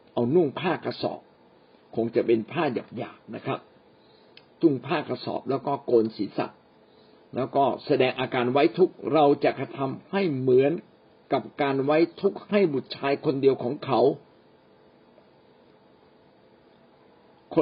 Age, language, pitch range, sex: 60-79, Thai, 125-185 Hz, male